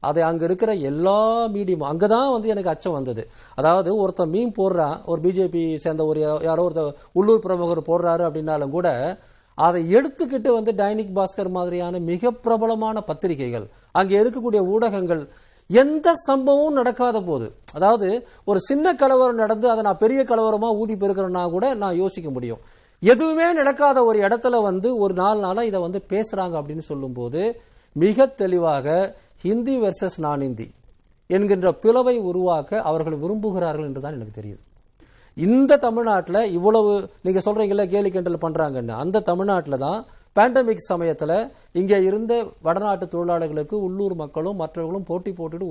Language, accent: Tamil, native